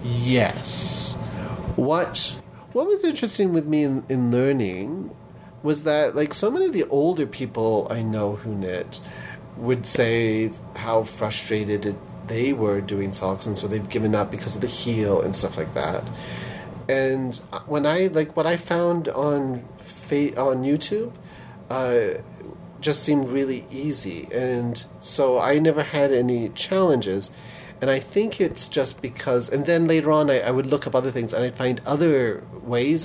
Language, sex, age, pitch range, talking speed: English, male, 40-59, 110-150 Hz, 160 wpm